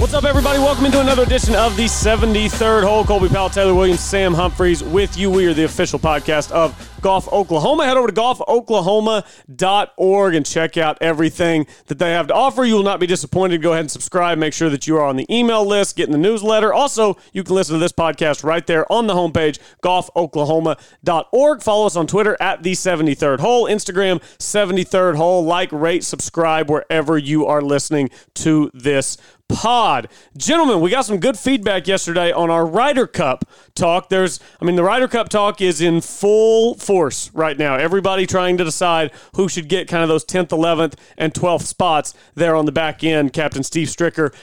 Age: 30-49